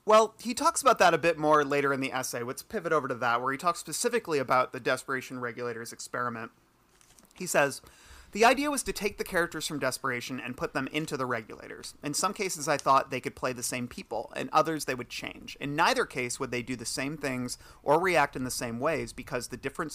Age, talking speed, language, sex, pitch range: 30-49, 230 wpm, English, male, 125-155 Hz